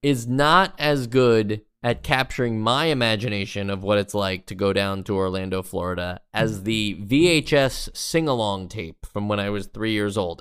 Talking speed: 175 wpm